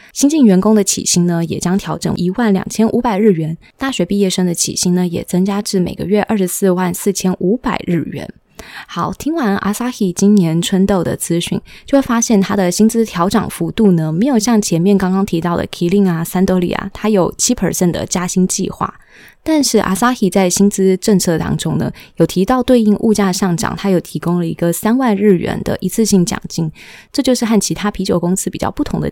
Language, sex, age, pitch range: Chinese, female, 20-39, 175-220 Hz